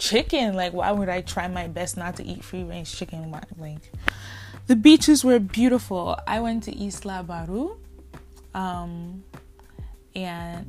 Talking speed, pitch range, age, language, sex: 140 wpm, 145-205 Hz, 20-39, English, female